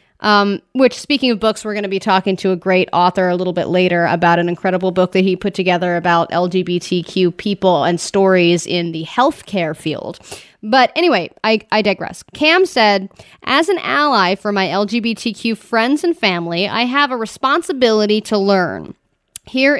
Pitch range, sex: 185-250 Hz, female